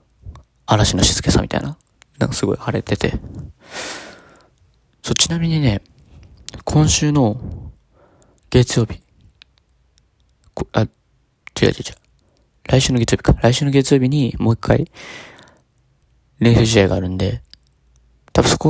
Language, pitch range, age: Japanese, 100-125 Hz, 20-39